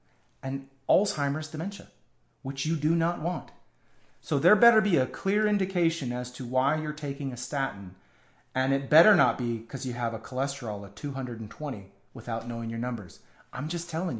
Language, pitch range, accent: English, 120-165 Hz, American